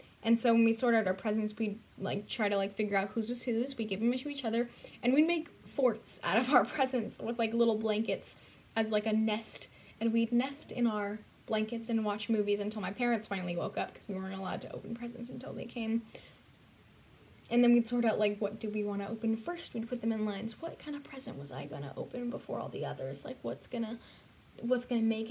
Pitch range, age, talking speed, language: 210-245 Hz, 10-29, 245 wpm, English